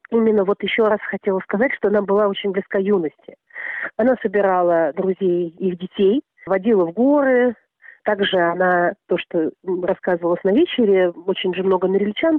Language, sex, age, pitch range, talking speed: Russian, female, 40-59, 180-240 Hz, 150 wpm